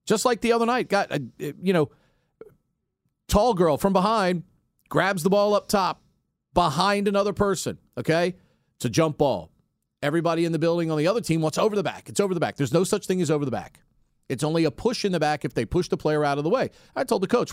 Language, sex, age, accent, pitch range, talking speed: English, male, 40-59, American, 160-235 Hz, 240 wpm